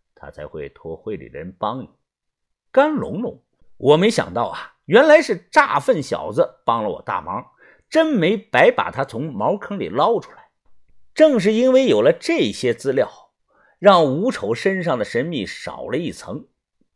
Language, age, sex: Chinese, 50-69, male